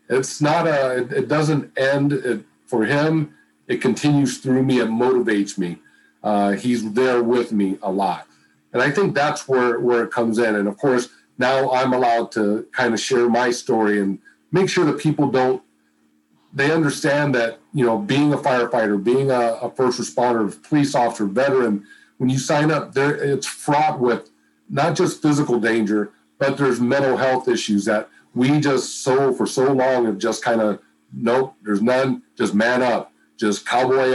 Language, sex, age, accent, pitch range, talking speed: English, male, 50-69, American, 110-140 Hz, 175 wpm